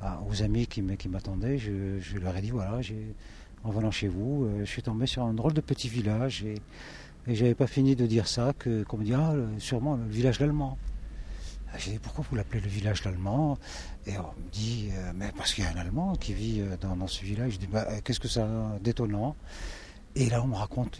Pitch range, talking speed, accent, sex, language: 100-125 Hz, 250 wpm, French, male, French